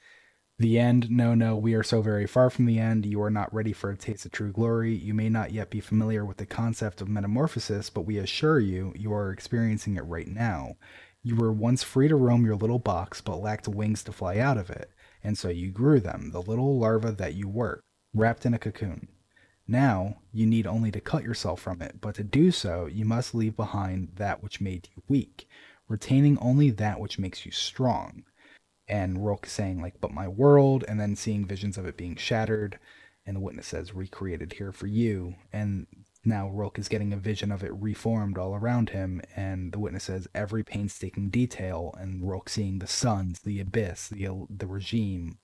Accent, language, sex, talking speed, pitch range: American, English, male, 210 wpm, 95-115 Hz